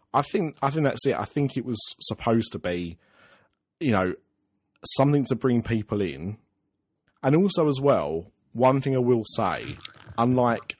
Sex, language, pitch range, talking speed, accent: male, English, 95-115 Hz, 165 wpm, British